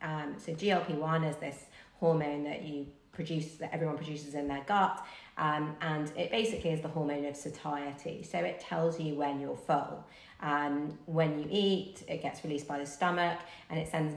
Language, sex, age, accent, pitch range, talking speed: English, female, 30-49, British, 145-175 Hz, 210 wpm